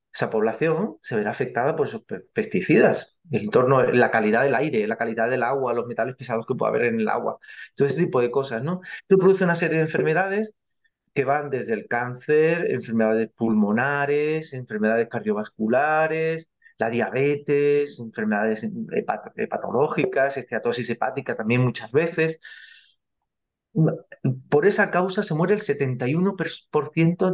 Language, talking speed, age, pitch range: Spanish, 145 wpm, 30-49, 130-190 Hz